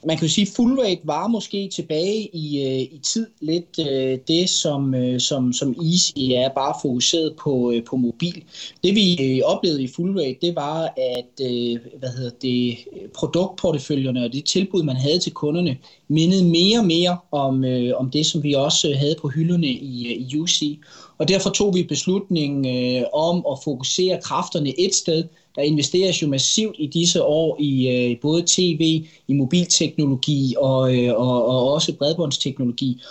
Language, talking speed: Danish, 150 wpm